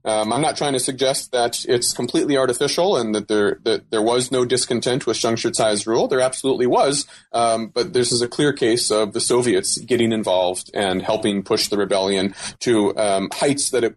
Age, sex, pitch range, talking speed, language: 30-49, male, 110-135 Hz, 200 wpm, English